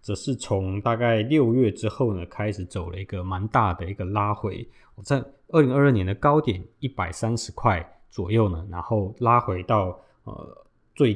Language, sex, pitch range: Chinese, male, 95-125 Hz